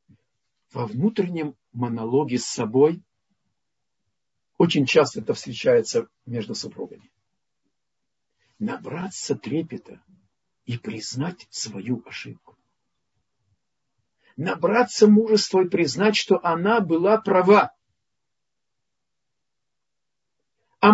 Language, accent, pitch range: Russian, native, 165-255 Hz